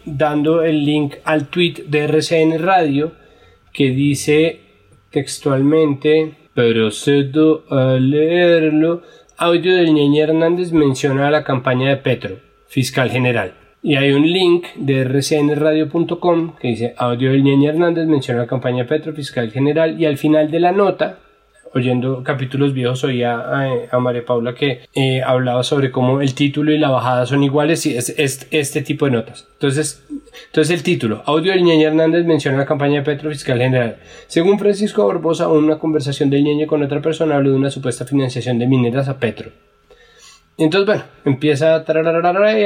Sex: male